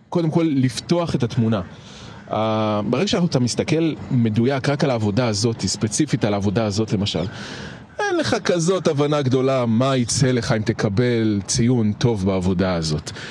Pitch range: 110-145 Hz